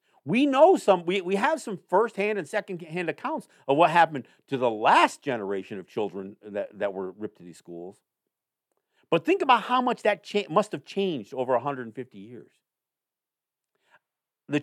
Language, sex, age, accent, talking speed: English, male, 50-69, American, 170 wpm